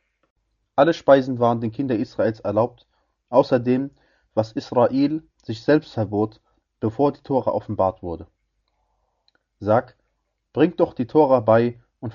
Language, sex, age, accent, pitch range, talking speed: German, male, 30-49, German, 110-130 Hz, 125 wpm